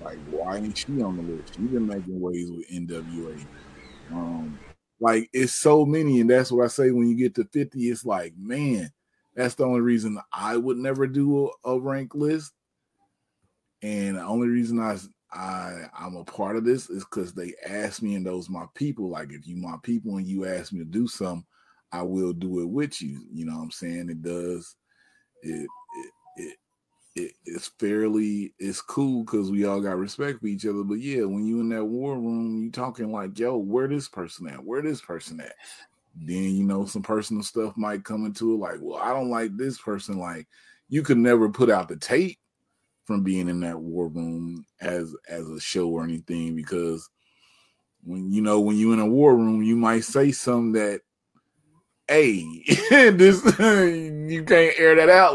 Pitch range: 90-130 Hz